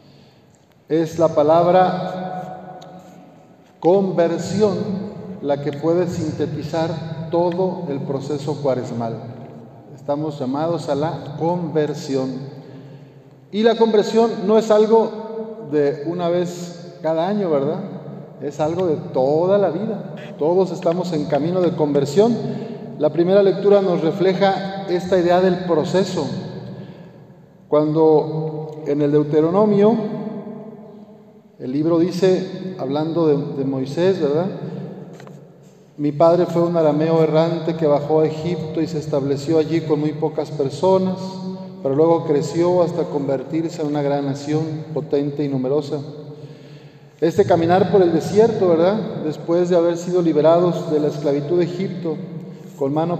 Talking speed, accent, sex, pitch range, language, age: 125 wpm, Mexican, male, 150-185 Hz, Spanish, 50-69